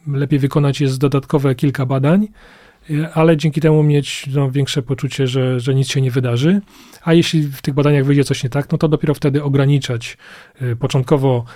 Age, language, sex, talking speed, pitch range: 30-49, Polish, male, 175 wpm, 130-150 Hz